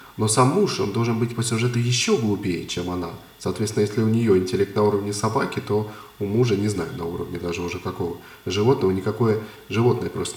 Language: Russian